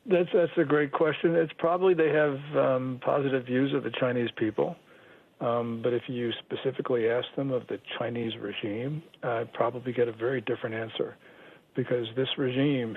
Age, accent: 60-79, American